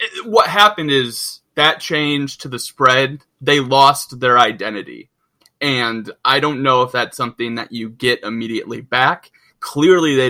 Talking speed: 150 wpm